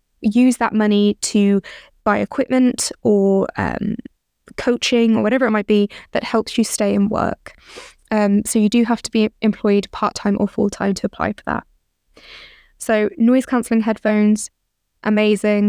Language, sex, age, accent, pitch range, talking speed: English, female, 20-39, British, 205-235 Hz, 155 wpm